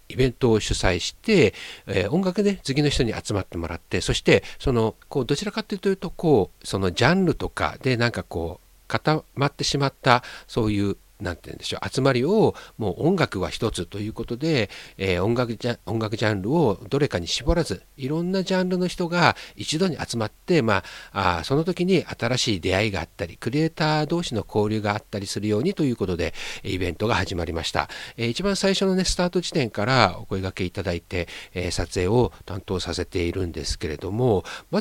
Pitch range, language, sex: 95-145 Hz, Japanese, male